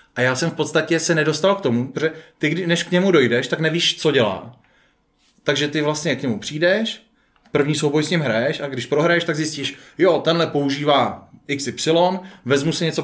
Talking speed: 195 wpm